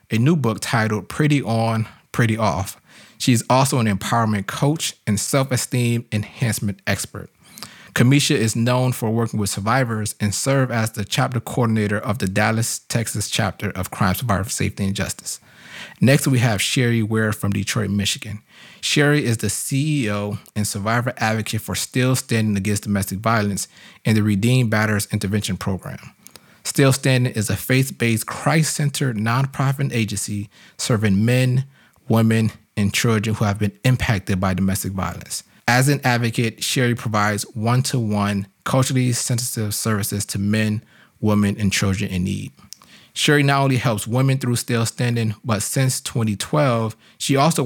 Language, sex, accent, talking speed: English, male, American, 145 wpm